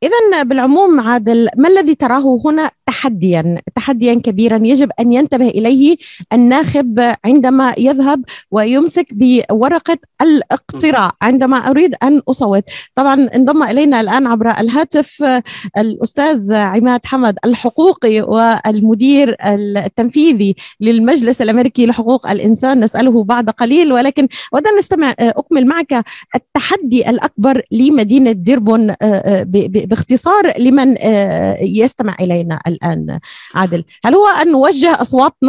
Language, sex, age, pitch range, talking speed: Arabic, female, 30-49, 225-285 Hz, 110 wpm